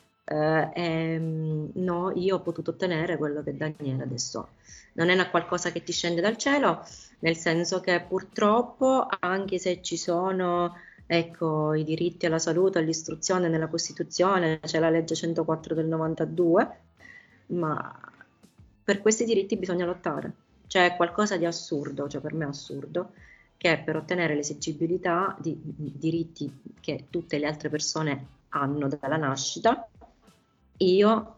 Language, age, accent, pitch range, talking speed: Italian, 30-49, native, 155-185 Hz, 145 wpm